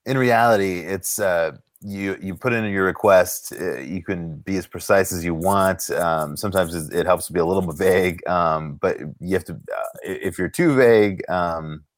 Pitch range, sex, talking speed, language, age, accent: 80-100 Hz, male, 195 wpm, English, 30-49, American